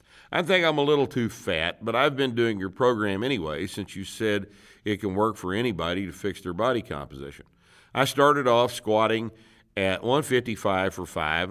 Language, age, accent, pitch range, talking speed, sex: English, 50-69, American, 95-125 Hz, 180 wpm, male